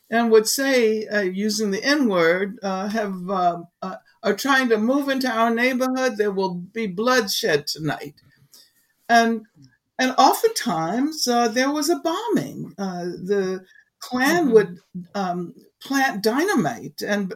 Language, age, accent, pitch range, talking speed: English, 60-79, American, 175-230 Hz, 140 wpm